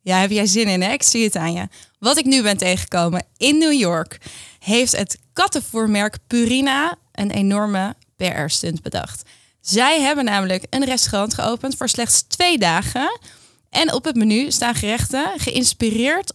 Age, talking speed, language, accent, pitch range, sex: 20-39, 160 wpm, Dutch, Dutch, 195-265 Hz, female